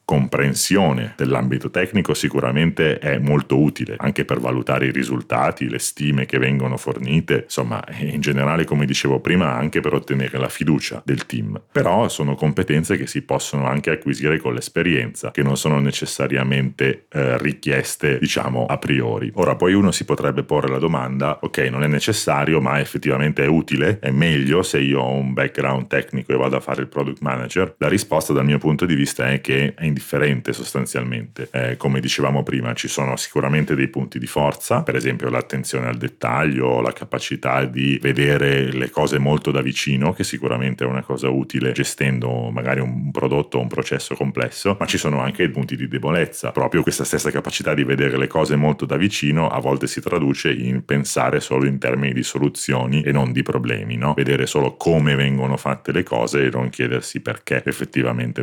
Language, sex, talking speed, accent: Italian, male, 180 wpm, native